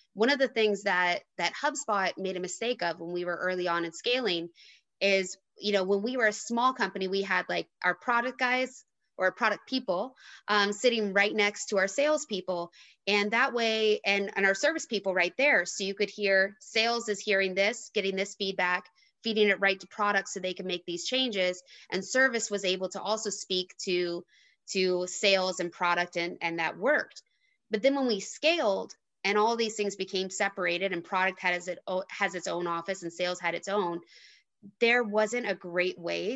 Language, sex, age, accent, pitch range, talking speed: English, female, 20-39, American, 175-215 Hz, 195 wpm